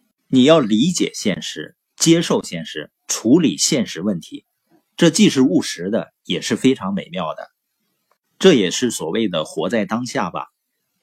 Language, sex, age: Chinese, male, 50-69